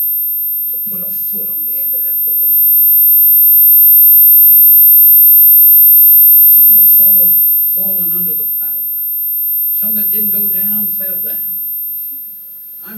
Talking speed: 140 wpm